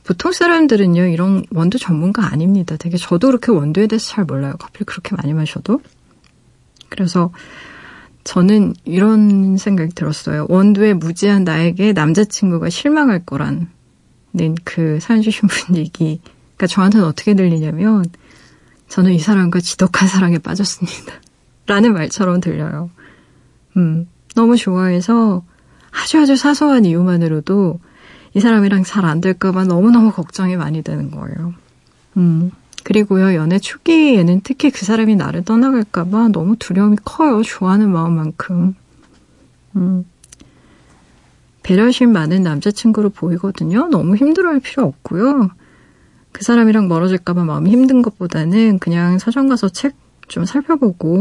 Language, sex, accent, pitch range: Korean, female, native, 170-215 Hz